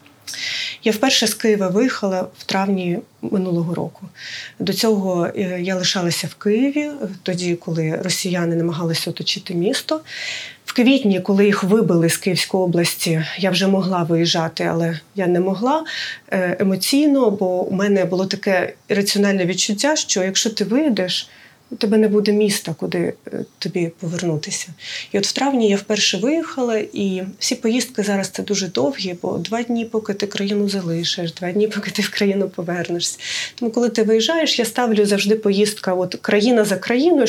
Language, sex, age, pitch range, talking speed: Ukrainian, female, 30-49, 185-225 Hz, 155 wpm